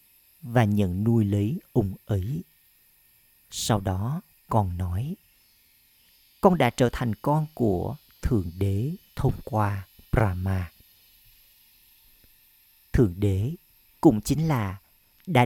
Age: 50-69